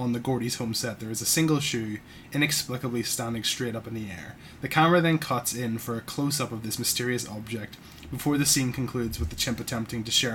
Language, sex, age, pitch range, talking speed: English, male, 20-39, 115-130 Hz, 225 wpm